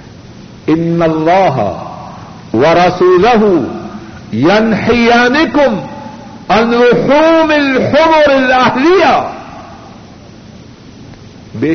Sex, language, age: male, Urdu, 60-79